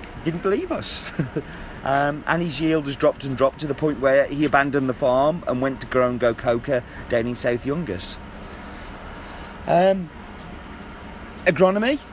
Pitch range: 105-140 Hz